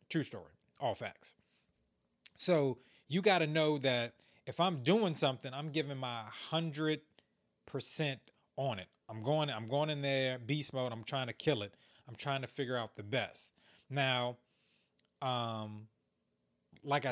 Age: 30-49